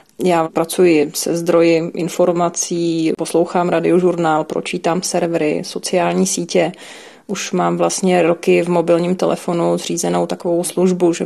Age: 30-49